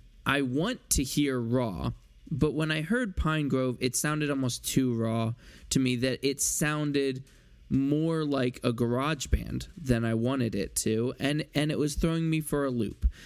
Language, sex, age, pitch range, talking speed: English, male, 20-39, 120-145 Hz, 180 wpm